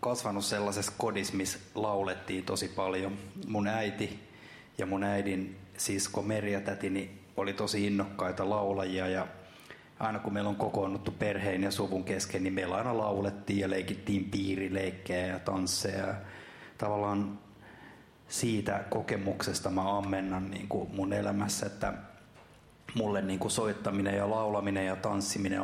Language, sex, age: Finnish, male, 30-49